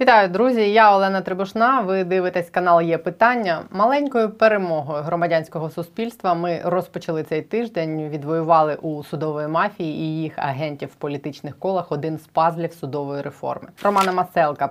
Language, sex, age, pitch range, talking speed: Ukrainian, female, 20-39, 150-180 Hz, 145 wpm